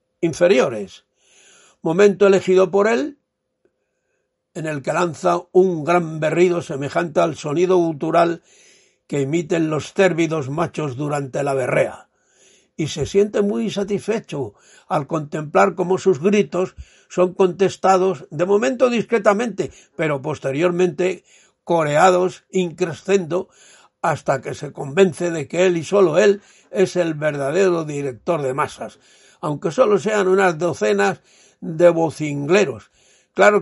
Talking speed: 120 wpm